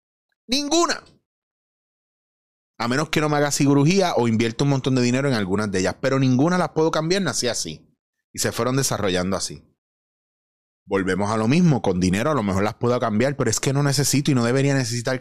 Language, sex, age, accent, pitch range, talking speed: Spanish, male, 30-49, Venezuelan, 110-150 Hz, 200 wpm